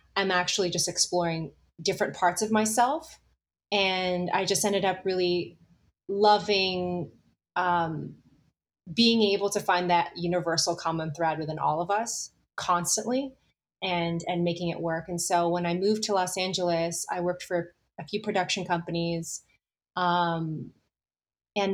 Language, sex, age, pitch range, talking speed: English, female, 20-39, 170-195 Hz, 140 wpm